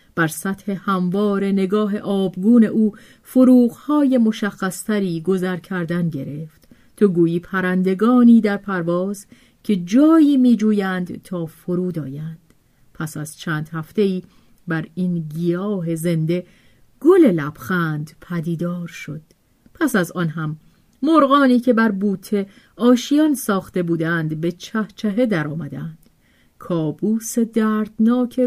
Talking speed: 105 wpm